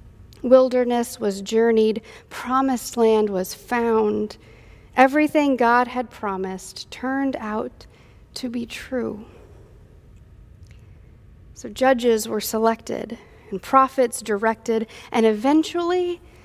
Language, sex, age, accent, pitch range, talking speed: English, female, 40-59, American, 220-260 Hz, 90 wpm